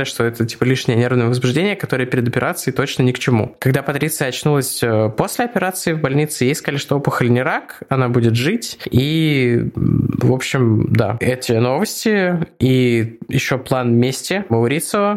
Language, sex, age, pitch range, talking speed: Russian, male, 20-39, 120-140 Hz, 160 wpm